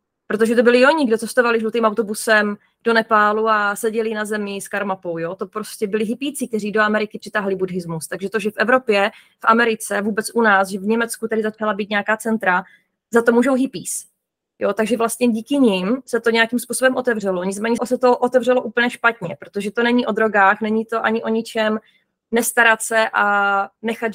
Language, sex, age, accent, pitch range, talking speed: Czech, female, 20-39, native, 215-245 Hz, 195 wpm